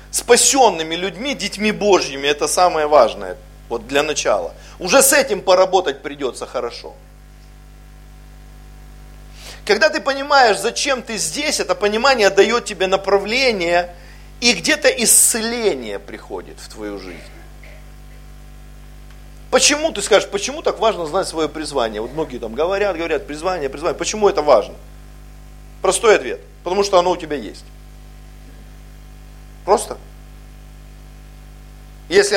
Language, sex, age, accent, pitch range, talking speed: Russian, male, 40-59, native, 175-240 Hz, 115 wpm